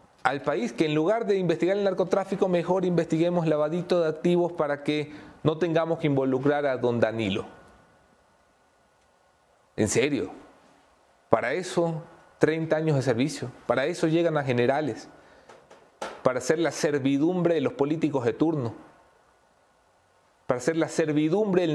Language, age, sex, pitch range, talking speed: English, 40-59, male, 140-170 Hz, 140 wpm